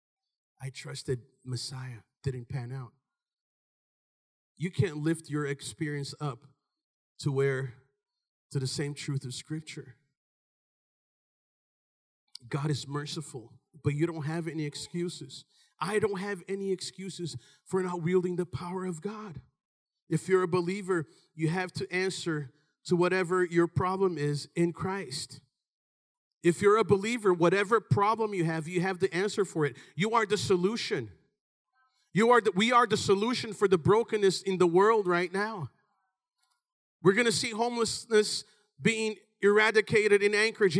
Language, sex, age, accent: English, male, 40-59, American